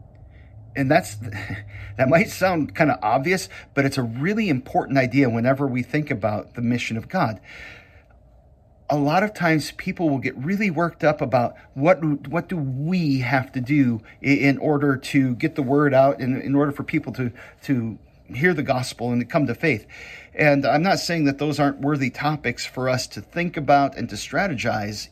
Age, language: 40-59, English